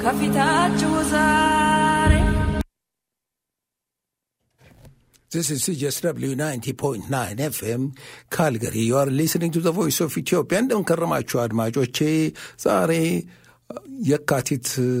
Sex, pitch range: male, 120-155 Hz